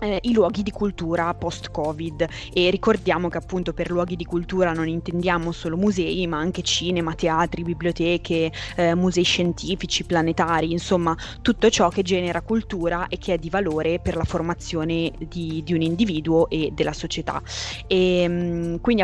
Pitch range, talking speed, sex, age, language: 170-190 Hz, 155 wpm, female, 20-39, Italian